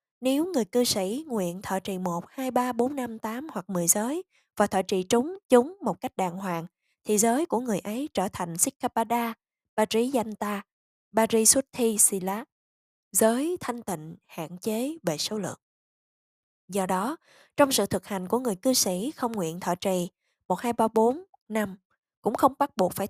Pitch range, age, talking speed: 190-255 Hz, 10-29, 175 wpm